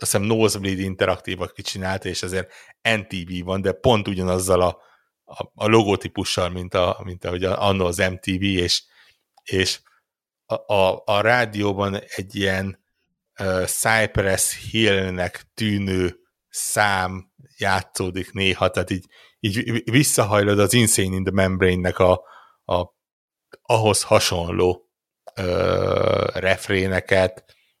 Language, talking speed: Hungarian, 100 wpm